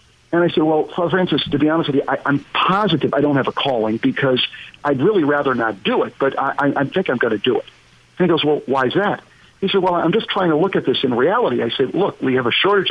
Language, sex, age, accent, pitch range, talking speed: English, male, 50-69, American, 130-175 Hz, 285 wpm